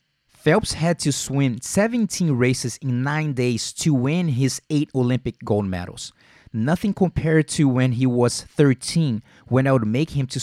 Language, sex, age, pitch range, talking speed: English, male, 30-49, 120-150 Hz, 165 wpm